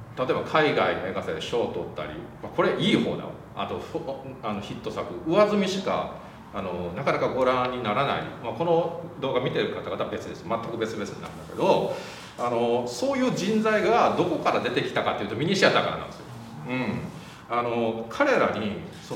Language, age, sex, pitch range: Japanese, 40-59, male, 115-180 Hz